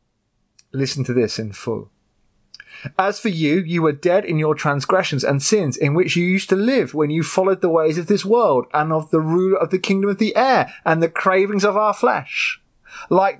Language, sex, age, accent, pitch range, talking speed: English, male, 30-49, British, 130-195 Hz, 210 wpm